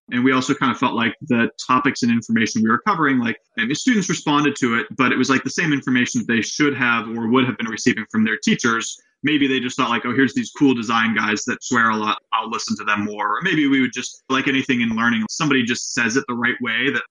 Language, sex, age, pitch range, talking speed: English, male, 20-39, 115-175 Hz, 265 wpm